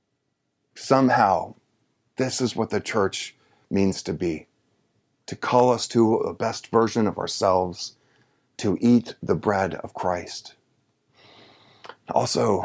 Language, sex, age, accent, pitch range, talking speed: English, male, 40-59, American, 100-115 Hz, 120 wpm